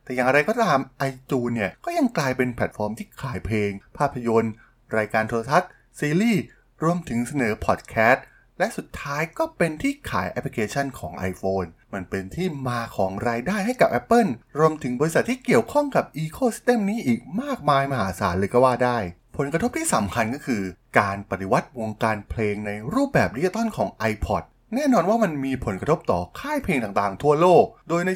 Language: Thai